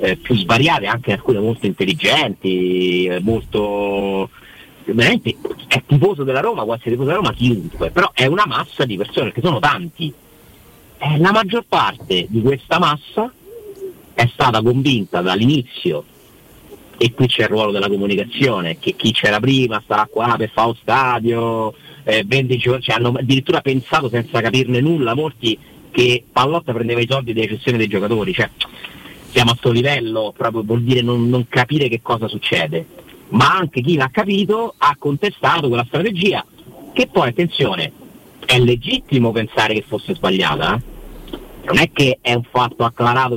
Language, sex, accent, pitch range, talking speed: Italian, male, native, 115-145 Hz, 160 wpm